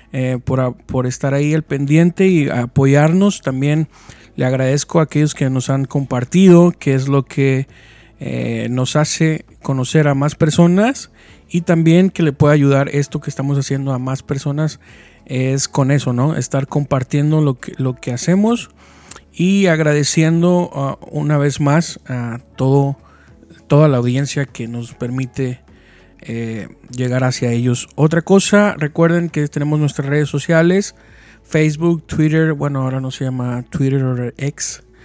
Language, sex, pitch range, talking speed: Spanish, male, 130-160 Hz, 145 wpm